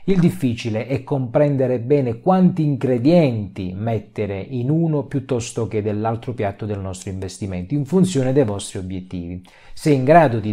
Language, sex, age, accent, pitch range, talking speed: Italian, male, 40-59, native, 100-140 Hz, 150 wpm